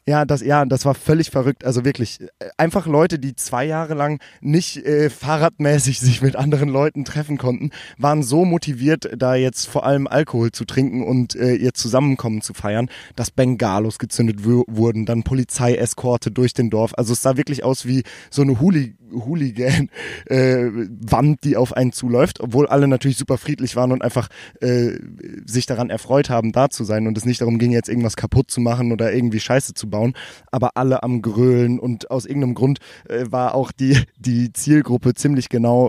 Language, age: German, 20-39